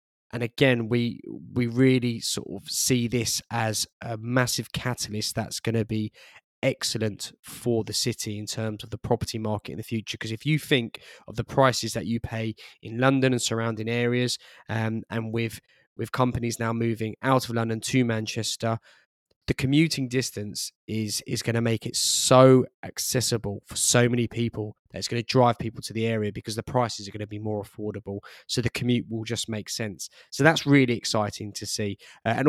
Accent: British